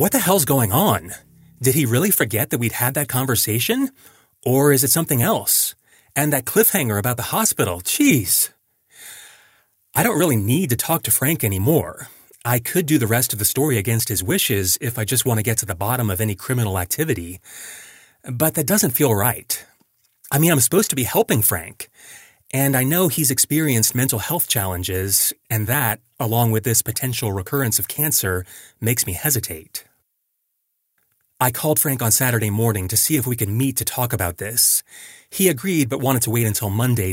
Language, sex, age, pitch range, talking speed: English, male, 30-49, 105-140 Hz, 185 wpm